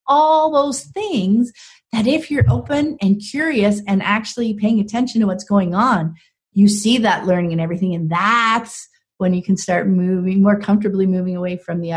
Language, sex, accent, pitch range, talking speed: English, female, American, 175-220 Hz, 180 wpm